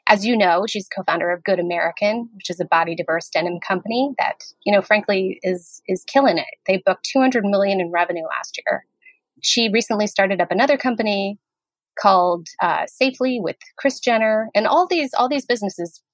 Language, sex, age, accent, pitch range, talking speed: English, female, 20-39, American, 180-235 Hz, 185 wpm